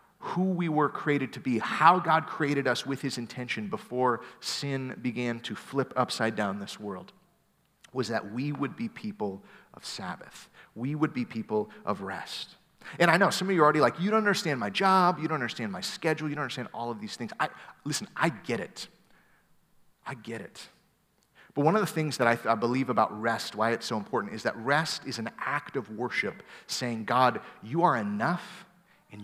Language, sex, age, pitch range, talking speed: English, male, 30-49, 120-160 Hz, 205 wpm